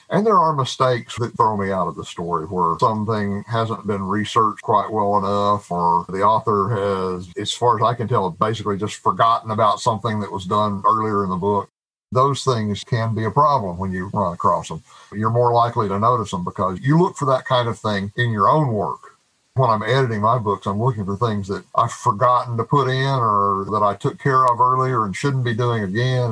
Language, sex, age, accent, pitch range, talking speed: English, male, 50-69, American, 100-125 Hz, 220 wpm